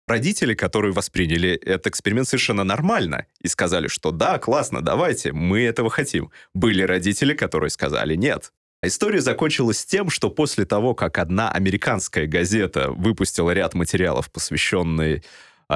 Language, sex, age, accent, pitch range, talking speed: Russian, male, 20-39, native, 90-115 Hz, 135 wpm